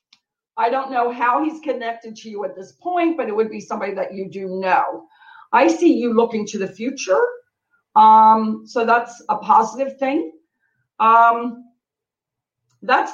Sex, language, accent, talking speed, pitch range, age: female, English, American, 160 wpm, 200-270 Hz, 50-69